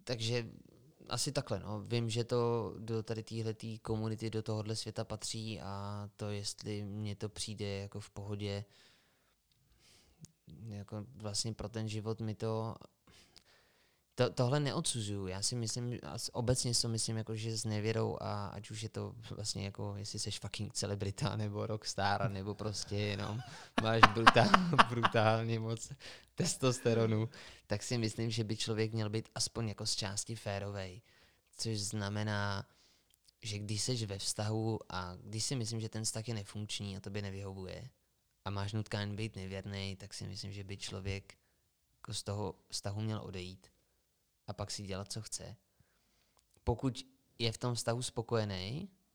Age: 20-39